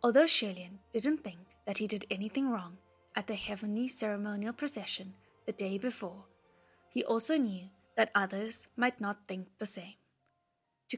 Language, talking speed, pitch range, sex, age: English, 155 wpm, 190-235 Hz, female, 10-29